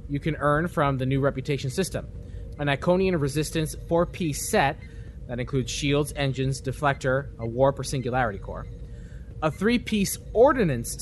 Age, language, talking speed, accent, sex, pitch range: 20-39, English, 140 wpm, American, male, 130-175 Hz